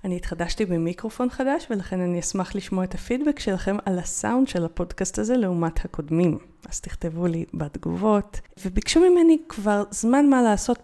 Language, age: Hebrew, 30-49